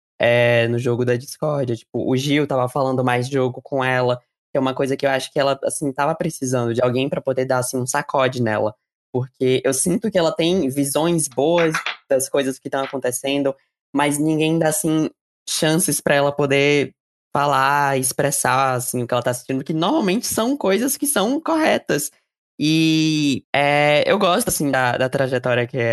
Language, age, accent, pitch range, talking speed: Portuguese, 20-39, Brazilian, 125-155 Hz, 185 wpm